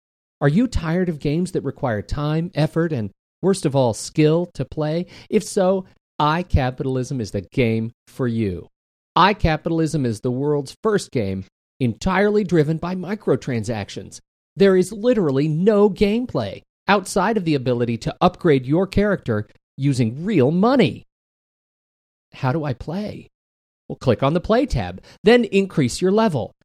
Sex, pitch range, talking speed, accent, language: male, 125-190 Hz, 145 wpm, American, English